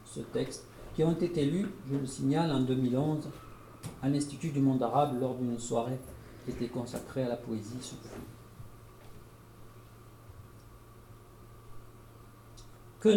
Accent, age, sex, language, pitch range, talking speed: French, 50-69, male, French, 115-140 Hz, 115 wpm